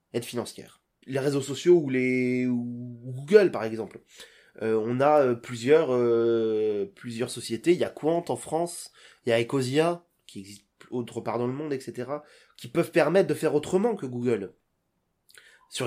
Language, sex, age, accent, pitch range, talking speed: French, male, 20-39, French, 125-170 Hz, 170 wpm